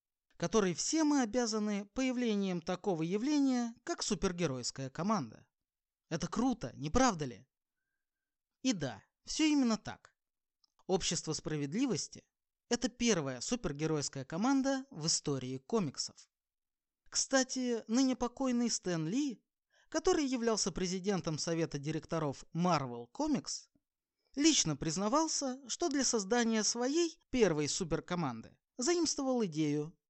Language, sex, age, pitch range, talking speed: Russian, male, 20-39, 160-260 Hz, 100 wpm